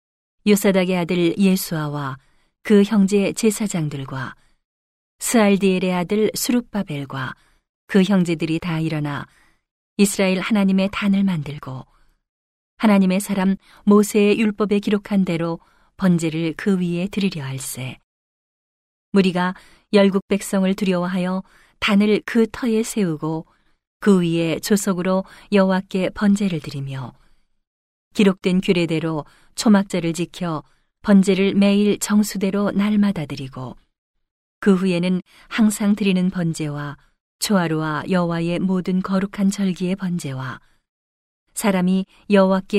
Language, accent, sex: Korean, native, female